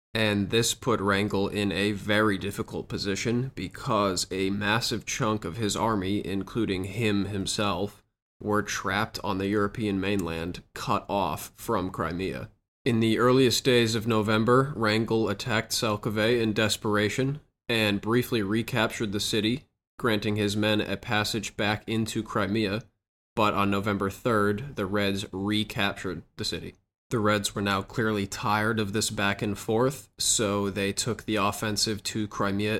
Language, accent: English, American